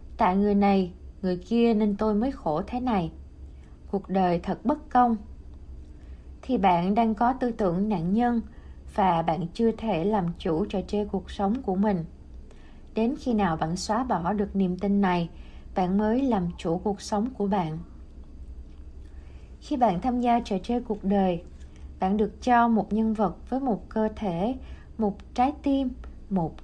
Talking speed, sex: 170 wpm, female